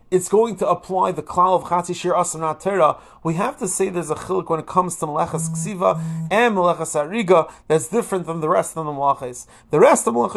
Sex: male